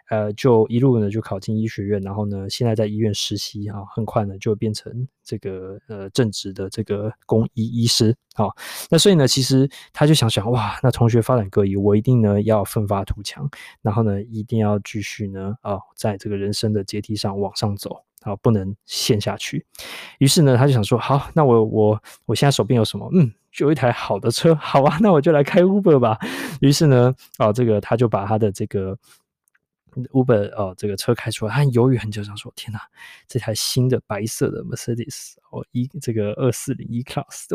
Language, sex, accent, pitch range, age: Chinese, male, native, 105-130 Hz, 20-39